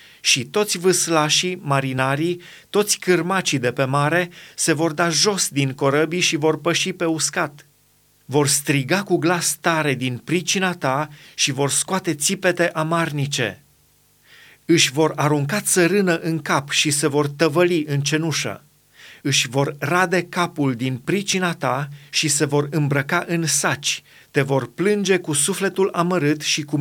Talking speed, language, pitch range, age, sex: 150 wpm, Romanian, 145-180 Hz, 30-49, male